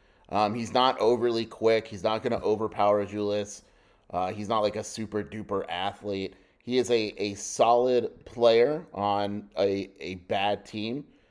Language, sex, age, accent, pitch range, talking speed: English, male, 30-49, American, 100-115 Hz, 160 wpm